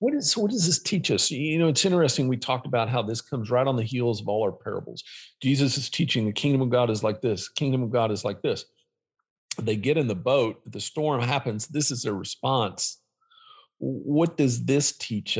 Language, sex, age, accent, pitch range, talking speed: English, male, 50-69, American, 115-145 Hz, 220 wpm